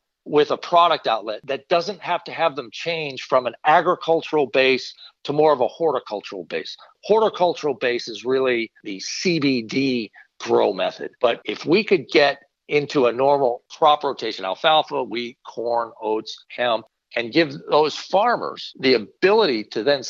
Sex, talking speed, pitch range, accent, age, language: male, 155 wpm, 130-180 Hz, American, 50-69, English